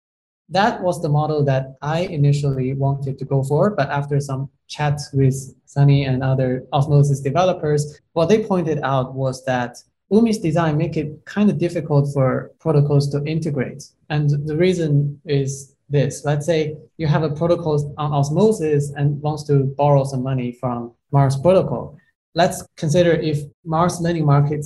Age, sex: 20-39, male